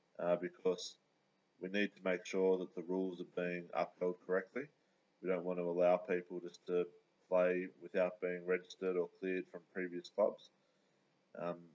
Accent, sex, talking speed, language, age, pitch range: Australian, male, 165 wpm, English, 20-39, 90-95 Hz